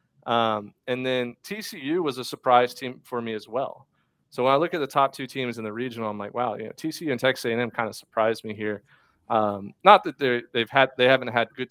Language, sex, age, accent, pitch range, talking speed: English, male, 30-49, American, 115-135 Hz, 240 wpm